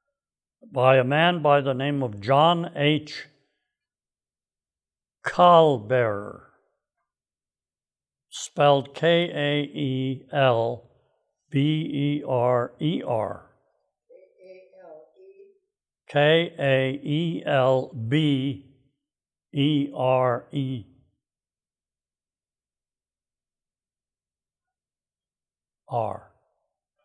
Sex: male